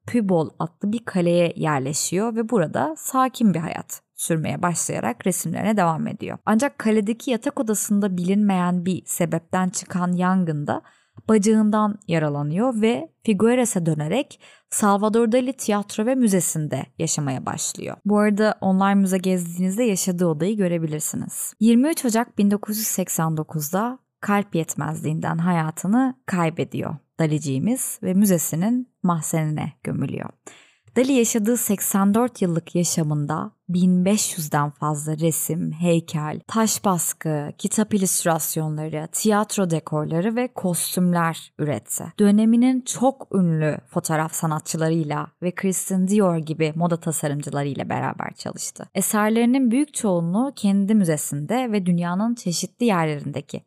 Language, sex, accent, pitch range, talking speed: Turkish, female, native, 165-220 Hz, 105 wpm